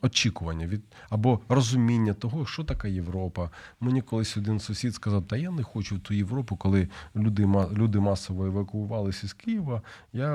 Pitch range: 100-125 Hz